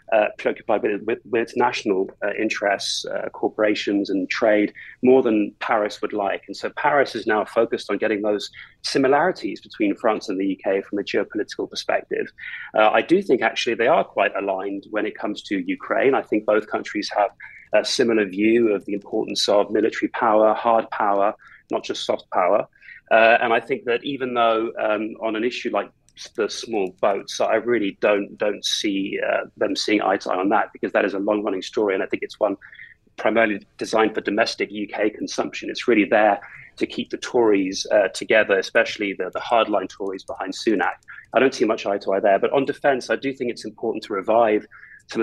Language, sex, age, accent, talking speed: English, male, 30-49, British, 205 wpm